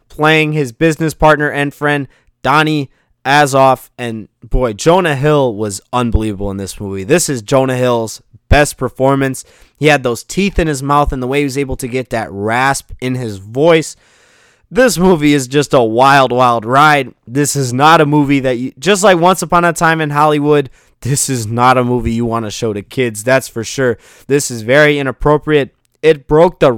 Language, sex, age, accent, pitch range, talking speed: English, male, 20-39, American, 120-155 Hz, 195 wpm